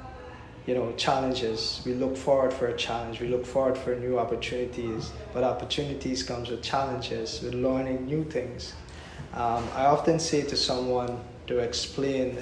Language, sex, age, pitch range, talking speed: English, male, 20-39, 115-130 Hz, 155 wpm